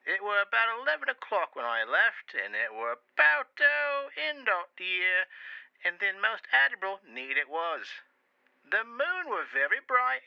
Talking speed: 165 wpm